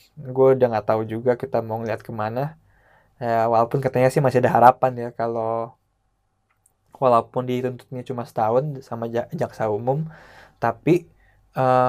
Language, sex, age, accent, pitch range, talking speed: Indonesian, male, 20-39, native, 115-130 Hz, 140 wpm